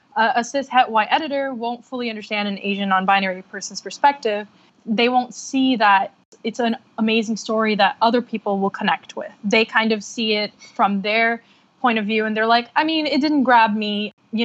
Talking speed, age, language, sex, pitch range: 190 wpm, 20-39, English, female, 210-245 Hz